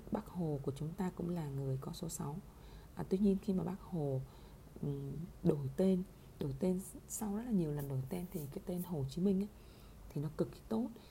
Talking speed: 220 wpm